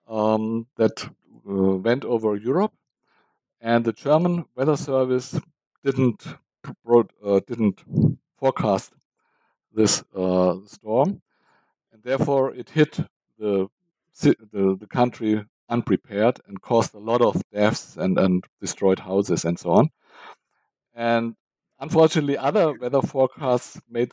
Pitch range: 110-140 Hz